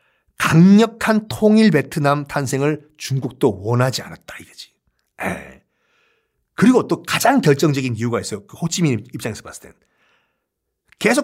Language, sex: Korean, male